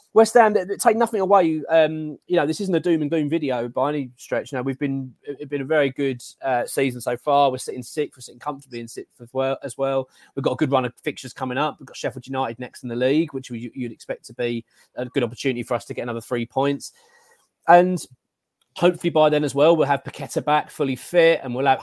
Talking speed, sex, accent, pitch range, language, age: 255 wpm, male, British, 120-150 Hz, English, 20-39